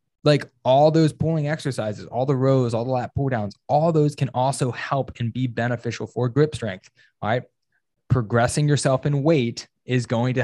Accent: American